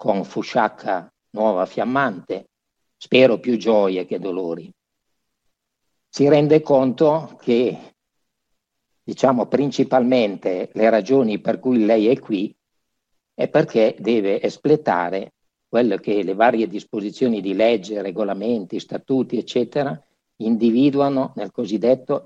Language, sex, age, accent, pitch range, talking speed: Italian, male, 50-69, native, 105-130 Hz, 105 wpm